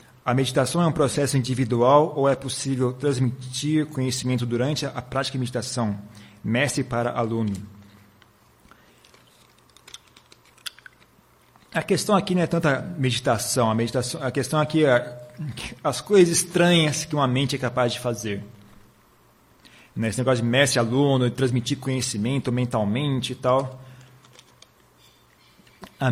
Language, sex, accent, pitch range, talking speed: Portuguese, male, Brazilian, 120-140 Hz, 120 wpm